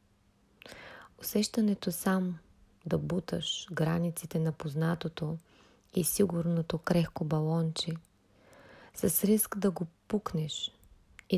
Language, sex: Bulgarian, female